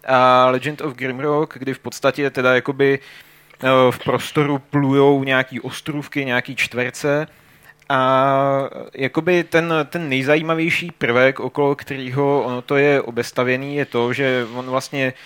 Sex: male